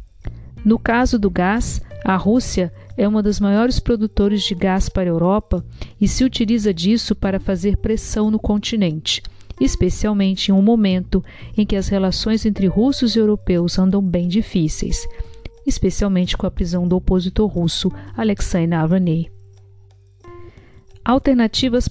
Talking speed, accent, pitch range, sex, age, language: 135 wpm, Brazilian, 170-215 Hz, female, 50-69, Portuguese